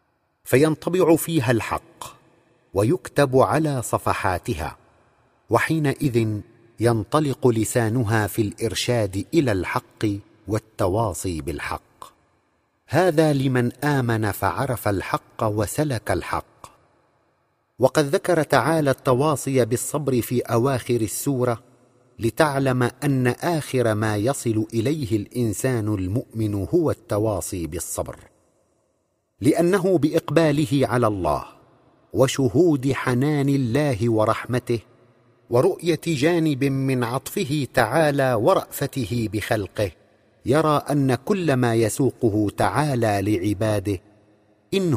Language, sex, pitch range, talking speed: Arabic, male, 110-145 Hz, 85 wpm